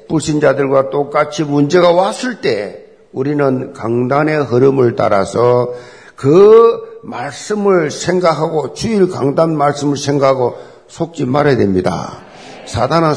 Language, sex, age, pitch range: Korean, male, 50-69, 135-195 Hz